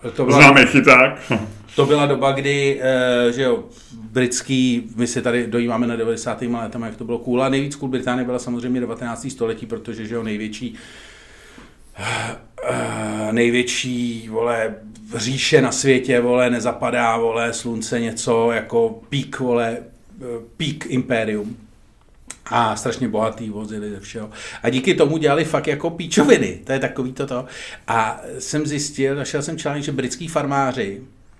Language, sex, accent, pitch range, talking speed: Czech, male, native, 115-130 Hz, 135 wpm